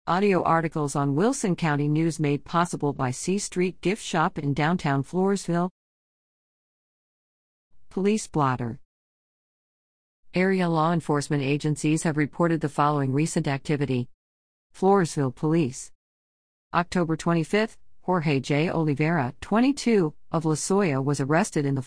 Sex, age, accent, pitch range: female, 50-69, American, 145-190 Hz